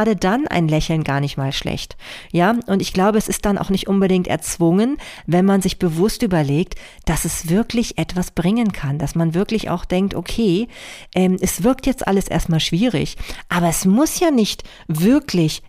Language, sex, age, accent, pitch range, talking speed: German, female, 40-59, German, 150-190 Hz, 180 wpm